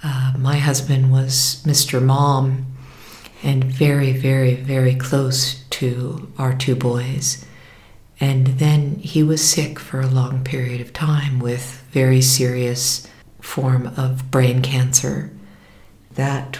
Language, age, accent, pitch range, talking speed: English, 50-69, American, 130-145 Hz, 125 wpm